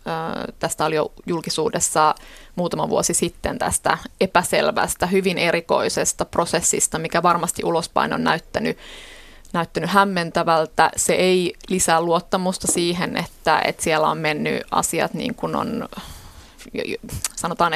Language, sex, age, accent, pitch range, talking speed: Finnish, female, 20-39, native, 165-185 Hz, 115 wpm